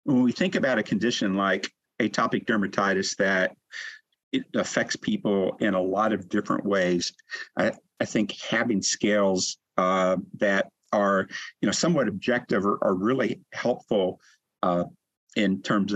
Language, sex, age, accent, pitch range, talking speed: English, male, 50-69, American, 95-105 Hz, 145 wpm